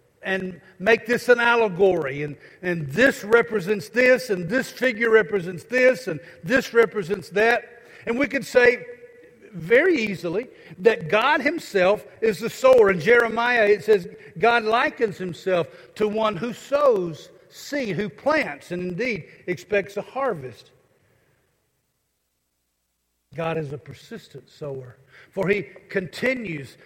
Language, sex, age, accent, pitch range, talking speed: English, male, 50-69, American, 170-240 Hz, 130 wpm